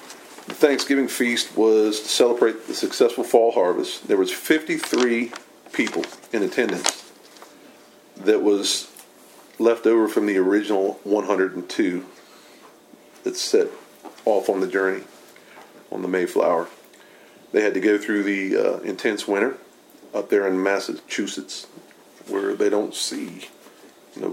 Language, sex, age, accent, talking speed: English, male, 40-59, American, 125 wpm